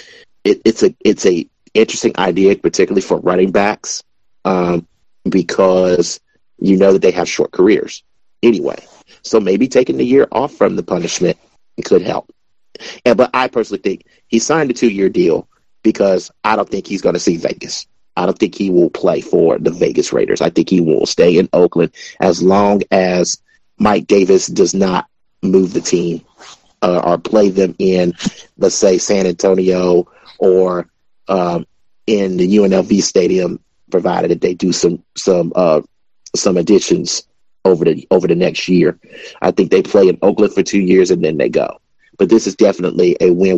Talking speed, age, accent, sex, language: 175 wpm, 30-49, American, male, English